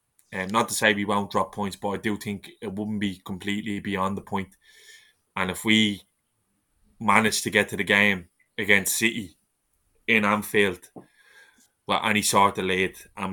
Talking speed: 175 wpm